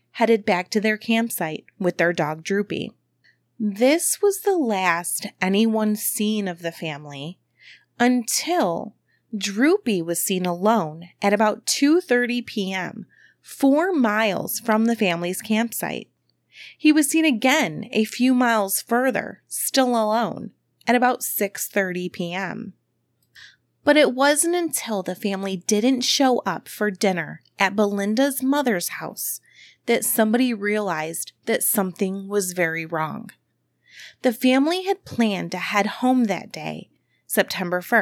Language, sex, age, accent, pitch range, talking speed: English, female, 30-49, American, 180-240 Hz, 125 wpm